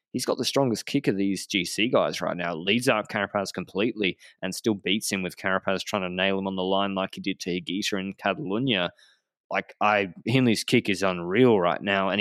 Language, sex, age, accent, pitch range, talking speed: English, male, 20-39, Australian, 95-115 Hz, 215 wpm